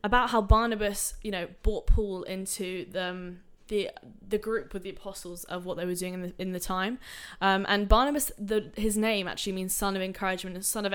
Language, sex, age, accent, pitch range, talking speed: English, female, 10-29, British, 185-215 Hz, 220 wpm